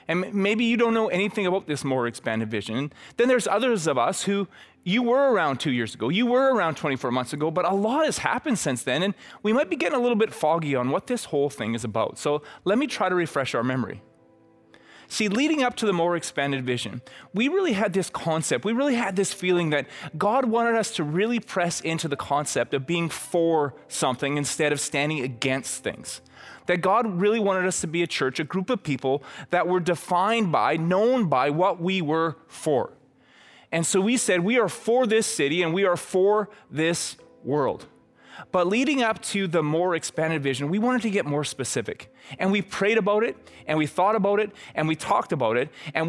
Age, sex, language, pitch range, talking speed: 20-39, male, English, 145-215 Hz, 215 wpm